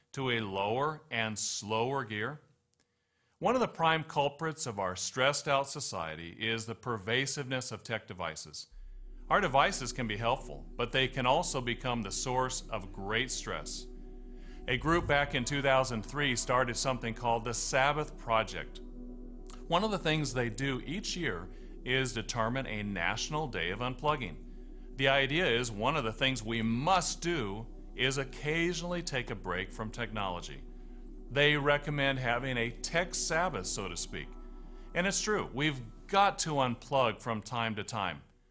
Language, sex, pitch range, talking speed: English, male, 110-145 Hz, 155 wpm